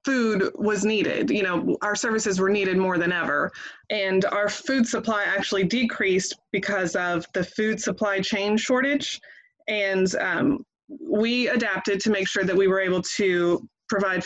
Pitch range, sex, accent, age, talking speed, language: 185-220 Hz, female, American, 20-39, 160 wpm, English